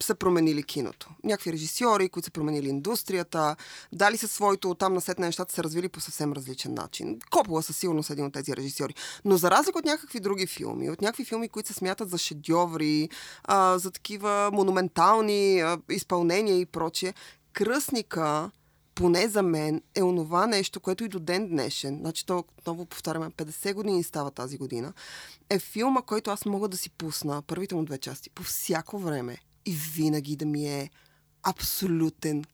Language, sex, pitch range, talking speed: Bulgarian, female, 160-215 Hz, 170 wpm